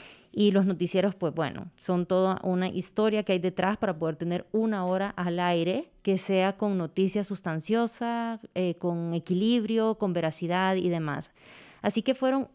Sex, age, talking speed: female, 30-49, 165 wpm